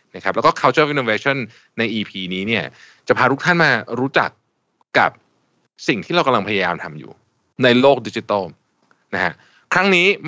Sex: male